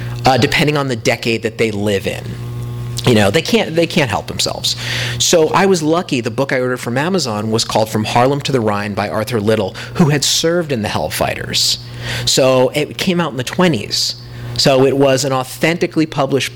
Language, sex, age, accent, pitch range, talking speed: English, male, 40-59, American, 120-155 Hz, 200 wpm